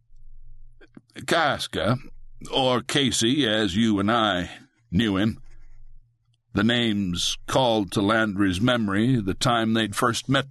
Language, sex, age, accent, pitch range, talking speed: English, male, 60-79, American, 100-120 Hz, 115 wpm